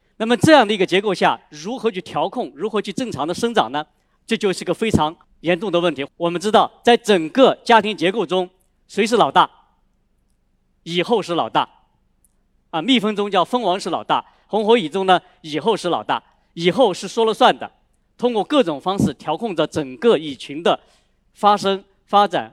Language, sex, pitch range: Chinese, male, 165-225 Hz